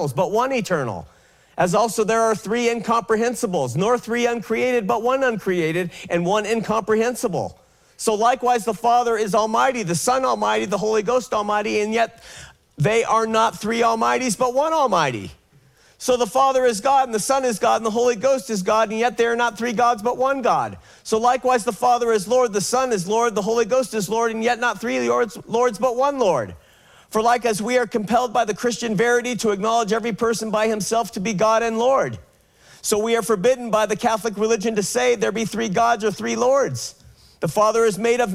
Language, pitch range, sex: English, 215-240 Hz, male